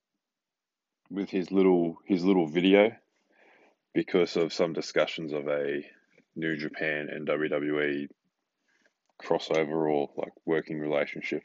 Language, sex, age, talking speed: English, male, 20-39, 110 wpm